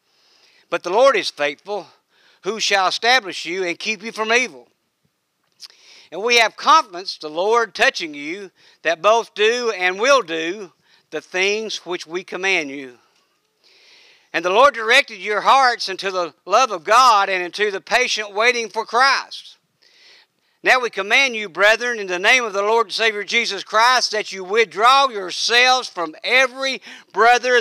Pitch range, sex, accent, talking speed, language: 180-250 Hz, male, American, 160 wpm, English